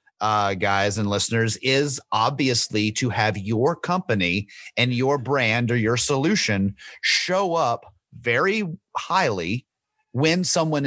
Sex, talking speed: male, 120 wpm